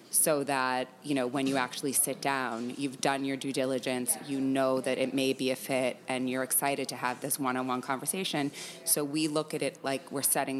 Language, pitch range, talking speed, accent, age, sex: English, 130-145 Hz, 215 wpm, American, 30-49, female